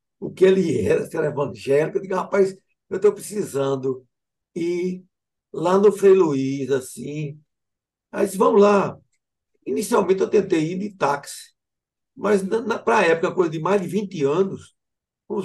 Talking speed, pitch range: 160 wpm, 150-200 Hz